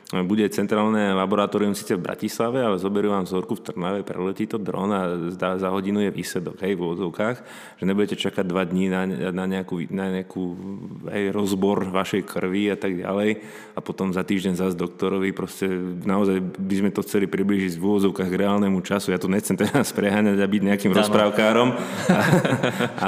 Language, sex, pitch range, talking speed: Slovak, male, 95-105 Hz, 175 wpm